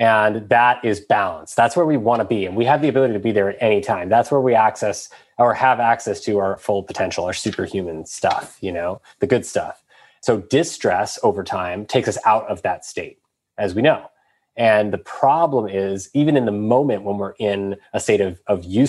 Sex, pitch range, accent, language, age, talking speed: male, 100-115 Hz, American, English, 20-39, 215 wpm